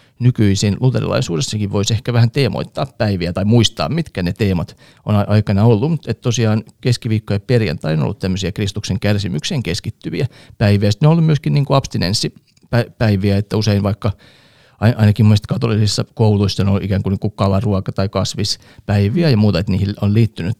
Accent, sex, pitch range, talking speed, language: native, male, 100-125 Hz, 155 wpm, Finnish